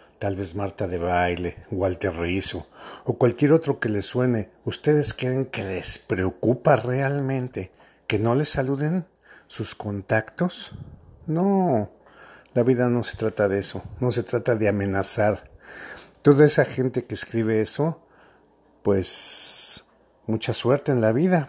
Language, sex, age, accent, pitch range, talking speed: Spanish, male, 50-69, Mexican, 100-130 Hz, 140 wpm